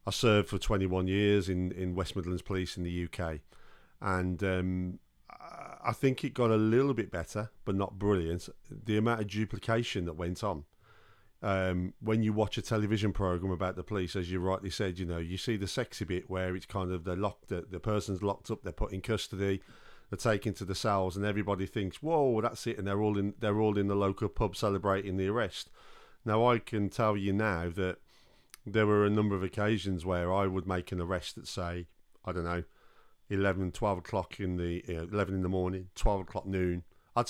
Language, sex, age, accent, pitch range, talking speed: English, male, 40-59, British, 90-105 Hz, 210 wpm